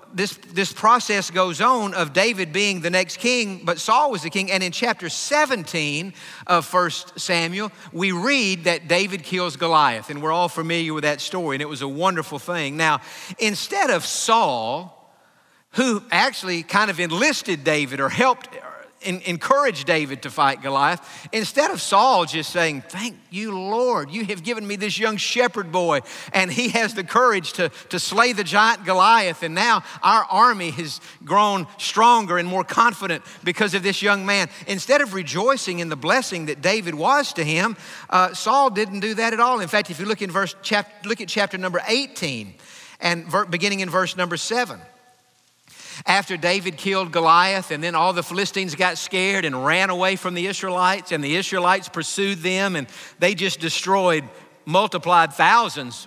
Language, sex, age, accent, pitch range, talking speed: English, male, 50-69, American, 170-210 Hz, 180 wpm